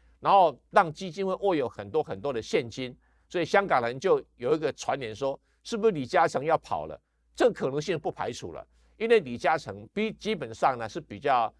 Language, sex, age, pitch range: Chinese, male, 50-69, 125-180 Hz